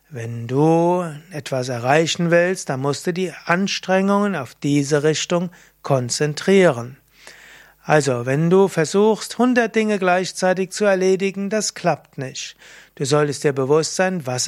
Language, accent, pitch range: German, German, 145-190 Hz